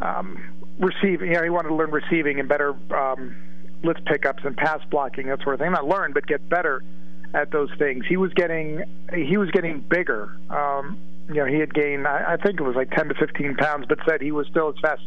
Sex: male